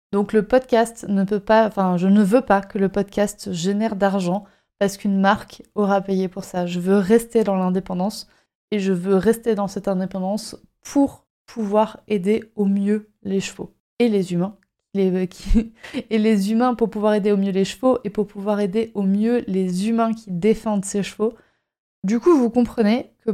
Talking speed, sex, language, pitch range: 190 wpm, female, French, 195-230 Hz